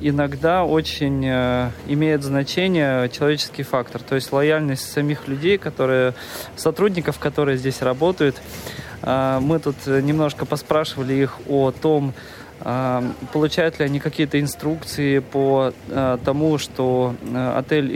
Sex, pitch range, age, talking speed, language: male, 130-155 Hz, 20-39, 105 wpm, Russian